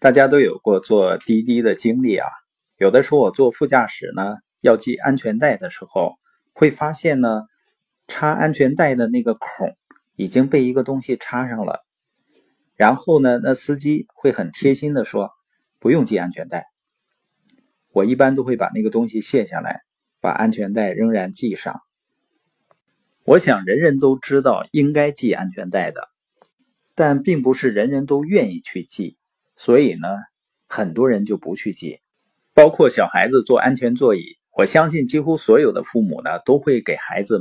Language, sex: Chinese, male